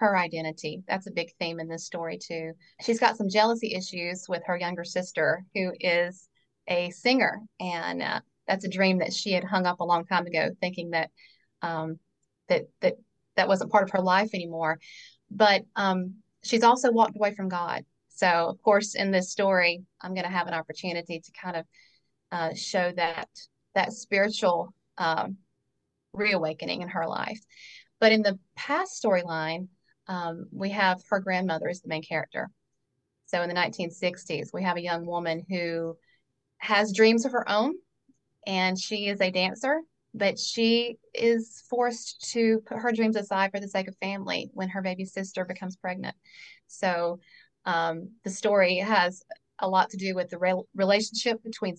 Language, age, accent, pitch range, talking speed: English, 30-49, American, 175-215 Hz, 175 wpm